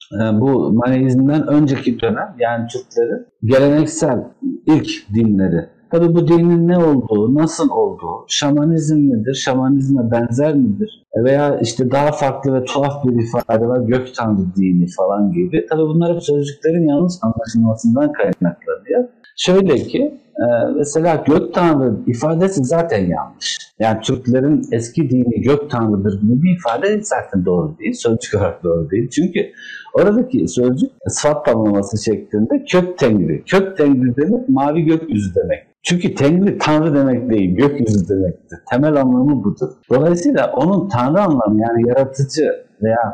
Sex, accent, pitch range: male, native, 115-175 Hz